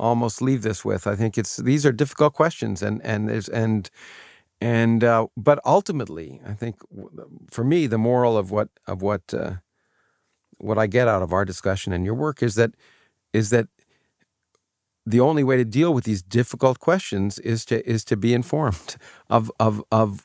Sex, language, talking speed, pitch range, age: male, English, 180 wpm, 110-135 Hz, 50-69